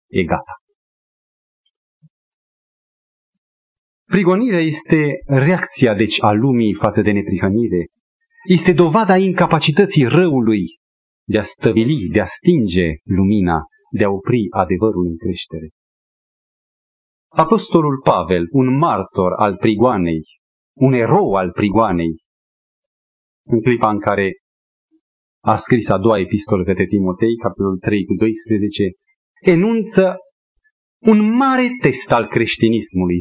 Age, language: 40-59, Romanian